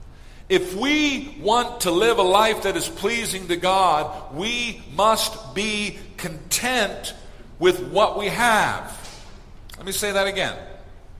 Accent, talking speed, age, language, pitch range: American, 135 wpm, 50-69, English, 140-210 Hz